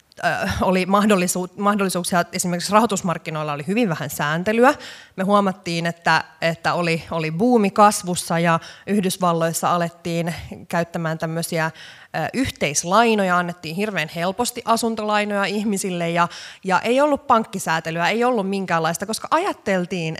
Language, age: Finnish, 20-39